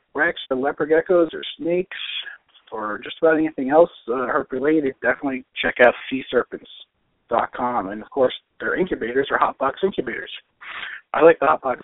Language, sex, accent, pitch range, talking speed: English, male, American, 130-170 Hz, 140 wpm